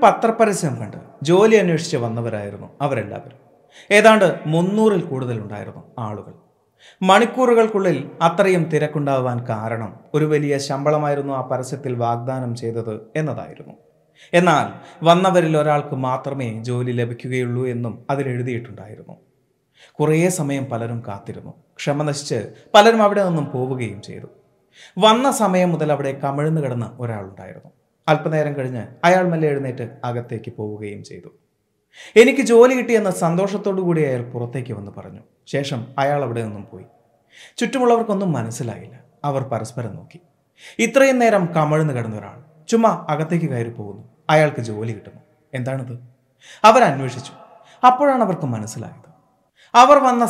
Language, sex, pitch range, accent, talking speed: Malayalam, male, 120-180 Hz, native, 105 wpm